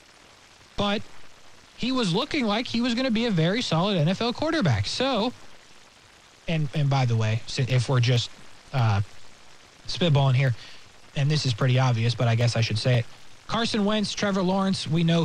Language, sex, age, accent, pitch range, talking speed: English, male, 20-39, American, 130-220 Hz, 175 wpm